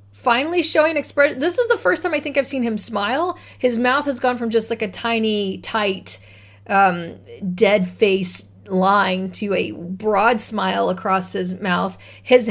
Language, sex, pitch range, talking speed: English, female, 185-260 Hz, 175 wpm